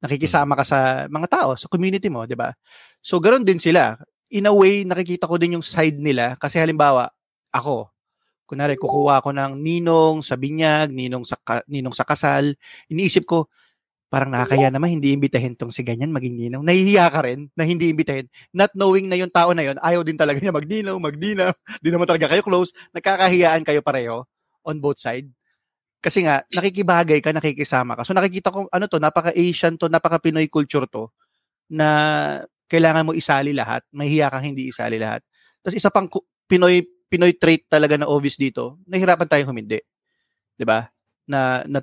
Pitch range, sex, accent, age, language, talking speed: 135-175 Hz, male, native, 20-39, Filipino, 175 wpm